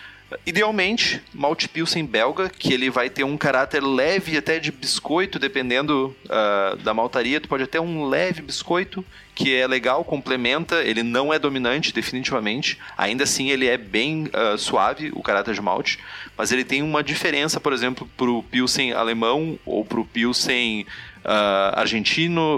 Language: Portuguese